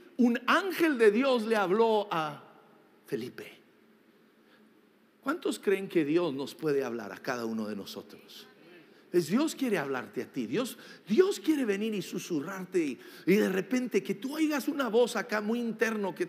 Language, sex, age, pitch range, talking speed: English, male, 50-69, 190-240 Hz, 160 wpm